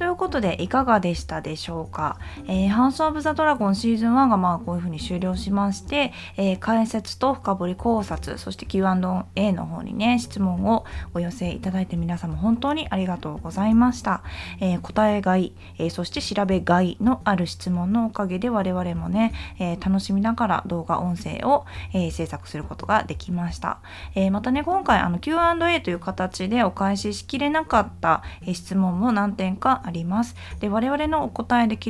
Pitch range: 175-230 Hz